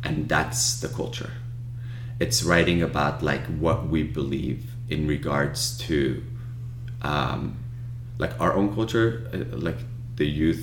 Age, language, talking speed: 30-49, English, 130 wpm